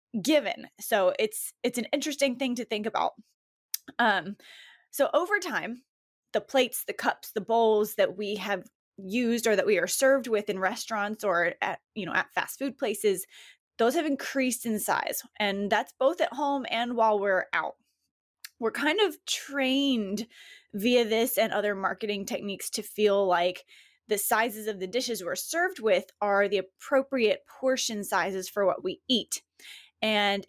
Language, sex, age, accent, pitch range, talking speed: English, female, 20-39, American, 200-260 Hz, 165 wpm